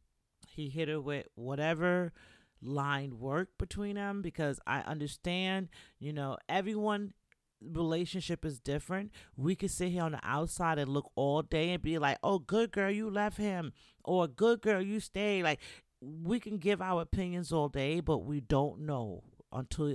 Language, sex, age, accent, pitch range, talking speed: English, male, 40-59, American, 140-180 Hz, 170 wpm